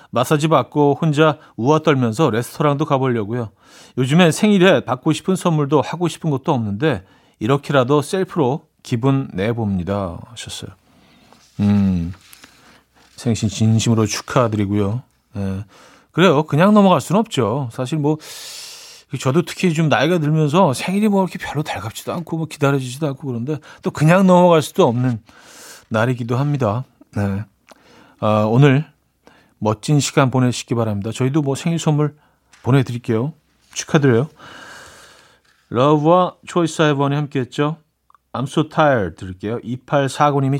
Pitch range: 105-155 Hz